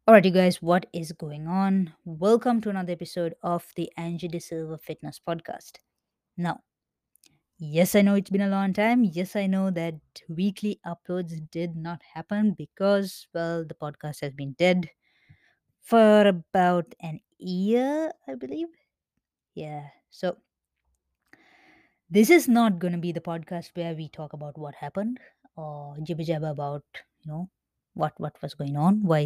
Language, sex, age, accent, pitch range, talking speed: English, female, 20-39, Indian, 165-195 Hz, 160 wpm